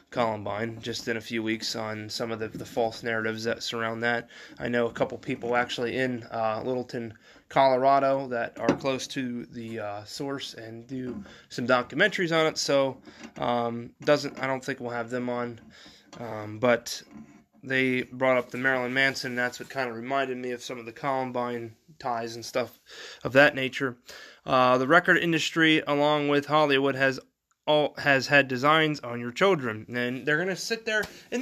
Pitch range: 120-155 Hz